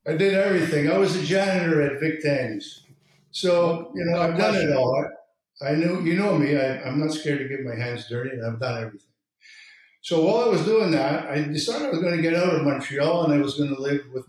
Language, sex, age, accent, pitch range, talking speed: English, male, 50-69, American, 120-160 Hz, 245 wpm